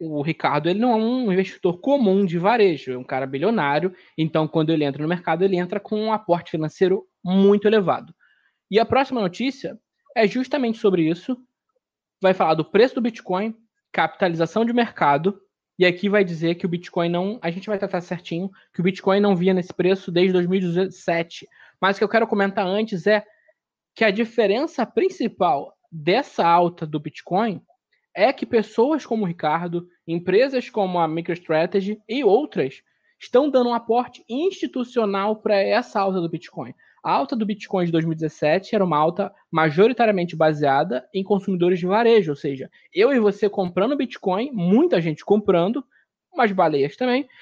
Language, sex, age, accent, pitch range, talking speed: Portuguese, male, 20-39, Brazilian, 175-235 Hz, 165 wpm